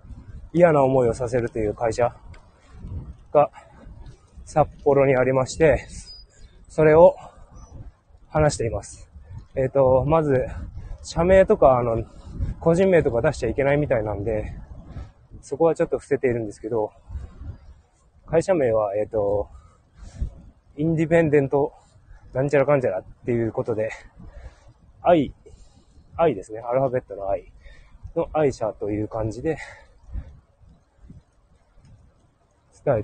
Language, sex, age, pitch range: Japanese, male, 20-39, 95-140 Hz